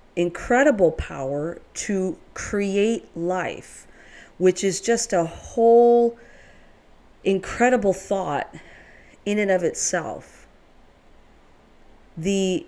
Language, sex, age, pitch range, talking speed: English, female, 40-59, 165-205 Hz, 80 wpm